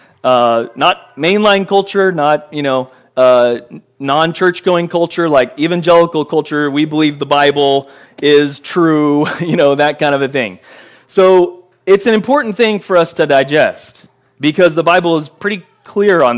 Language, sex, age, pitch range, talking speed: English, male, 30-49, 130-175 Hz, 155 wpm